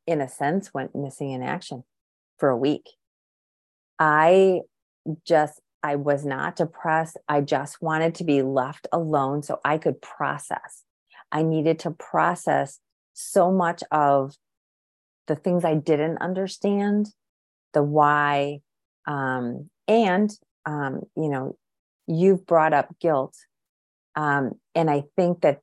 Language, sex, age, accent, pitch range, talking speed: English, female, 30-49, American, 135-170 Hz, 130 wpm